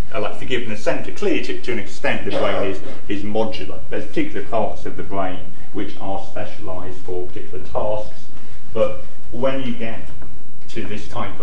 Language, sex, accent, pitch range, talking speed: English, male, British, 90-110 Hz, 175 wpm